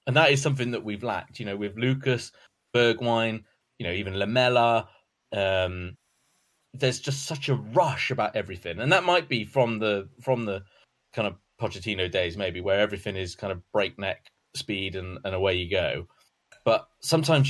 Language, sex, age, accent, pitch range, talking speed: English, male, 20-39, British, 110-135 Hz, 175 wpm